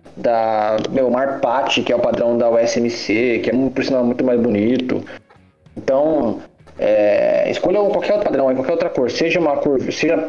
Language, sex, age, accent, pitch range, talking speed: Portuguese, male, 20-39, Brazilian, 110-155 Hz, 165 wpm